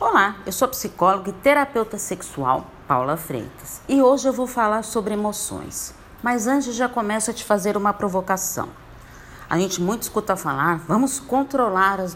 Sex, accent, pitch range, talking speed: female, Brazilian, 170-235 Hz, 170 wpm